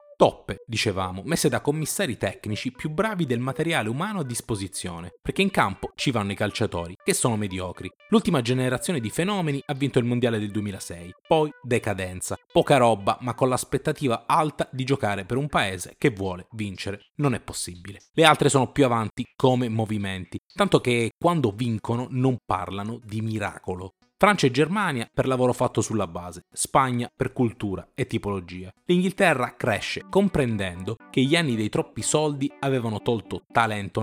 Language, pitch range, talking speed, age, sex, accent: Italian, 105-150 Hz, 160 wpm, 30-49, male, native